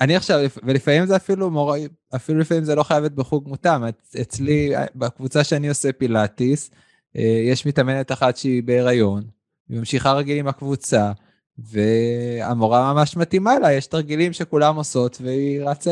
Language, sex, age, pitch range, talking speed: Hebrew, male, 20-39, 125-155 Hz, 145 wpm